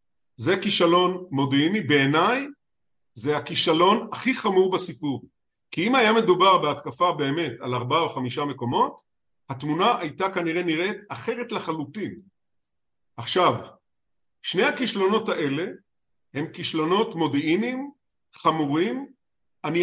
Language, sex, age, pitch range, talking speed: Hebrew, male, 50-69, 145-220 Hz, 105 wpm